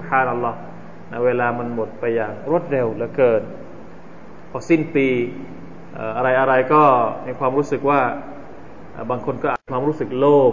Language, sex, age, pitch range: Thai, male, 20-39, 135-175 Hz